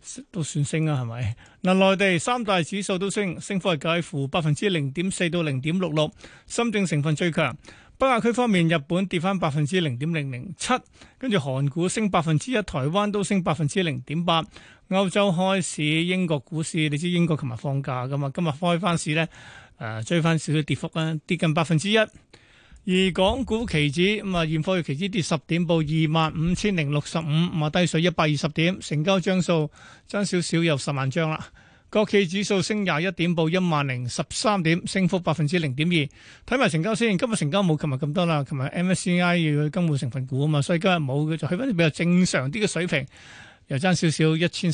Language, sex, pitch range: Chinese, male, 150-190 Hz